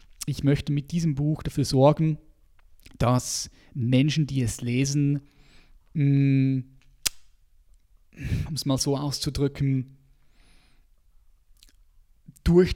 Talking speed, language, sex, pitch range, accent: 85 wpm, German, male, 115-140 Hz, German